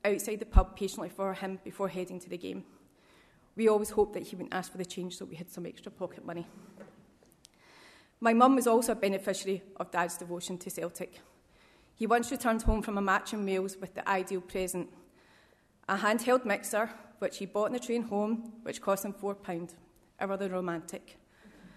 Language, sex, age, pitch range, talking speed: English, female, 30-49, 190-215 Hz, 190 wpm